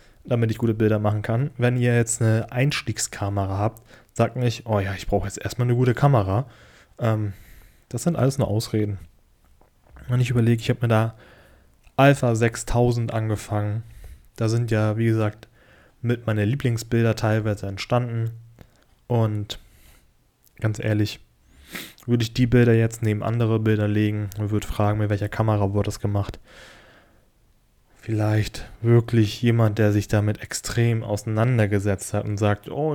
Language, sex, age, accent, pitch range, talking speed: German, male, 20-39, German, 105-130 Hz, 150 wpm